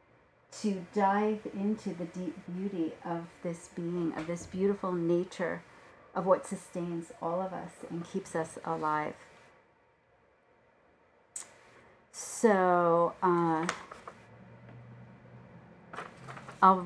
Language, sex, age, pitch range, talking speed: English, female, 40-59, 175-250 Hz, 95 wpm